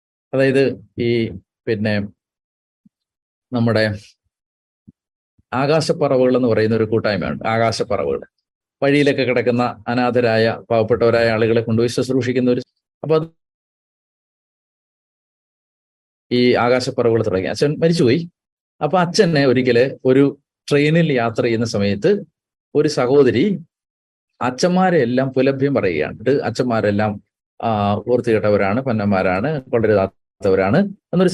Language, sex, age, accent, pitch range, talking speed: Malayalam, male, 30-49, native, 115-150 Hz, 80 wpm